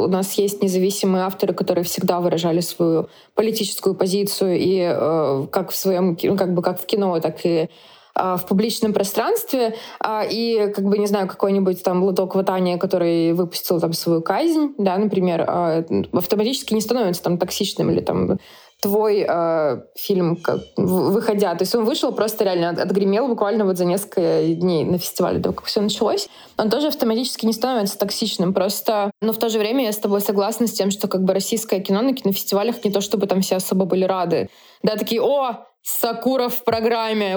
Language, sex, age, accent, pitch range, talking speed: Russian, female, 20-39, native, 185-220 Hz, 185 wpm